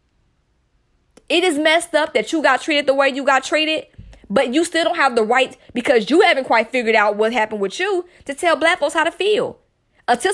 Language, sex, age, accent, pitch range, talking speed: English, female, 20-39, American, 230-315 Hz, 220 wpm